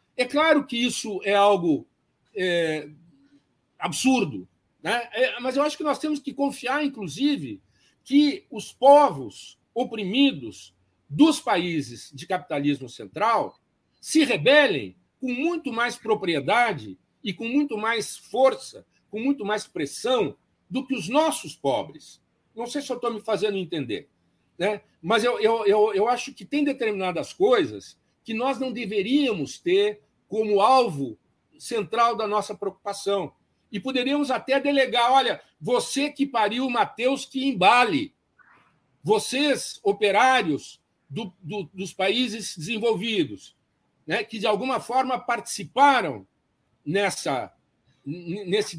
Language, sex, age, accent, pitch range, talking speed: Portuguese, male, 60-79, Brazilian, 200-275 Hz, 125 wpm